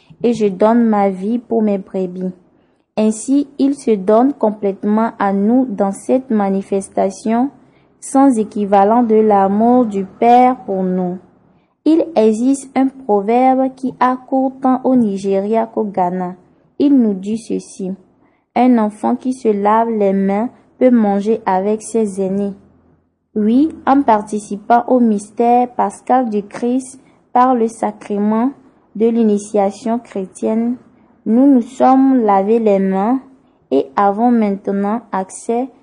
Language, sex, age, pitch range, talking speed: French, female, 20-39, 200-250 Hz, 130 wpm